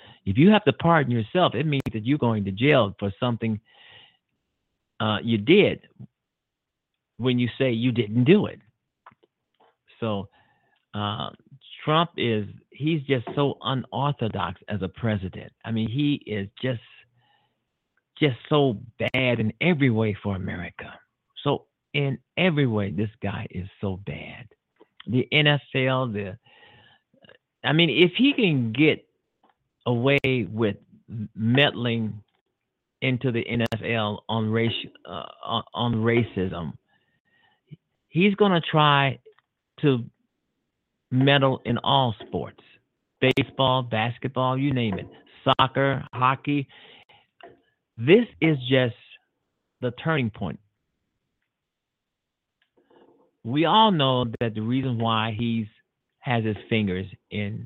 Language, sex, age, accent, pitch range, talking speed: English, male, 50-69, American, 110-140 Hz, 115 wpm